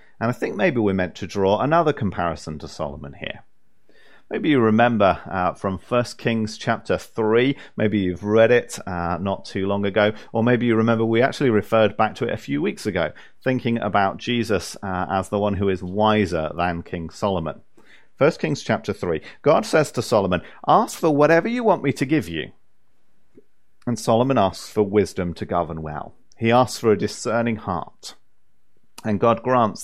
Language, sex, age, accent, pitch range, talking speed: English, male, 40-59, British, 95-125 Hz, 185 wpm